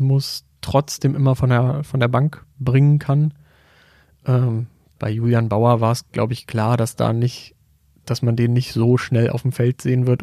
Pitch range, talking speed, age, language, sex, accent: 120-130 Hz, 195 wpm, 30-49, German, male, German